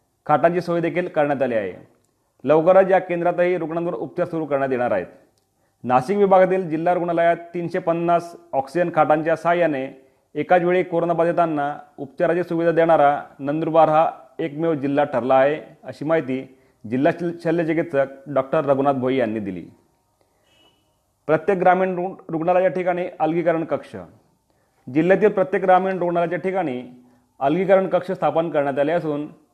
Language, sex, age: Marathi, male, 40-59